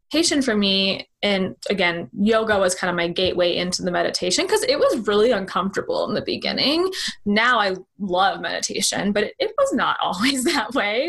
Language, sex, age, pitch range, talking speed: English, female, 20-39, 200-260 Hz, 180 wpm